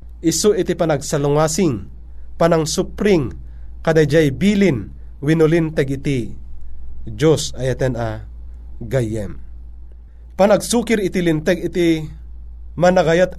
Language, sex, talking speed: Filipino, male, 80 wpm